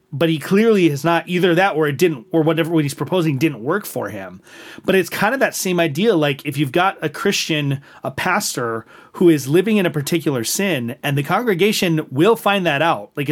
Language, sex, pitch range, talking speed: English, male, 140-180 Hz, 215 wpm